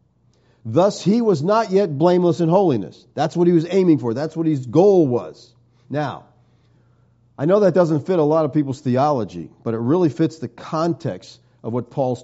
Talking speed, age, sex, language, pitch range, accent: 190 wpm, 50-69, male, English, 120-165 Hz, American